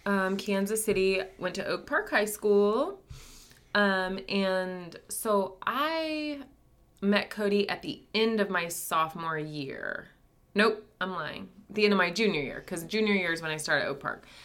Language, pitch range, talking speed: English, 150-205 Hz, 165 wpm